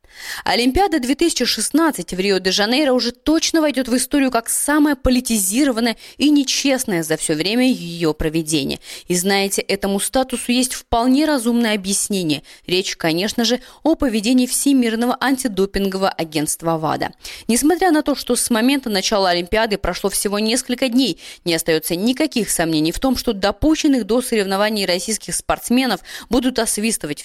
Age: 20-39